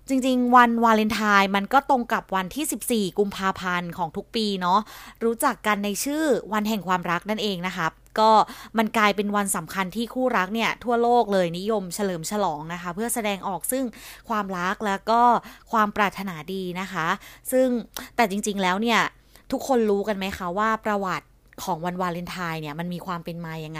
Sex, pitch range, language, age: female, 185-230 Hz, Thai, 20-39